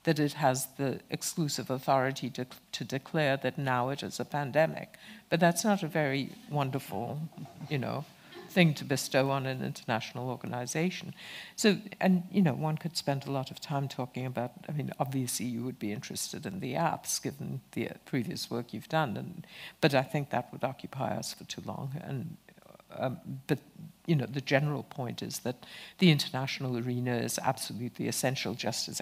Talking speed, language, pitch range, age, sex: 180 wpm, English, 130-175 Hz, 60-79, female